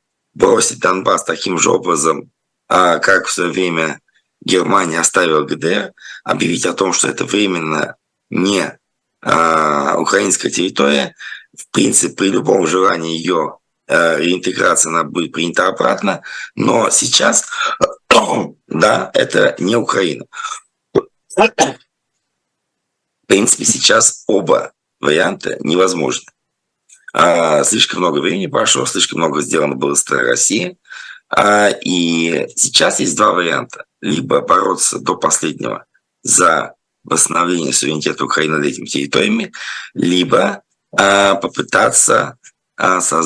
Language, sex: Russian, male